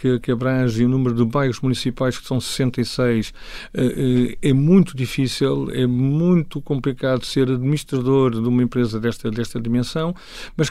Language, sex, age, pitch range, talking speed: English, male, 50-69, 130-150 Hz, 140 wpm